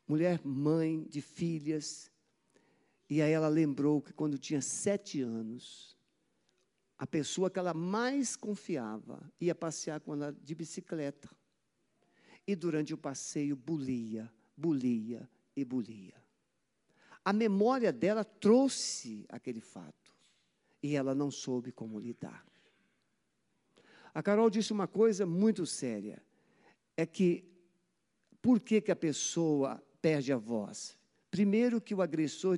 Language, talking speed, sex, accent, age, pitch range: Portuguese, 120 wpm, male, Brazilian, 50-69, 145-205 Hz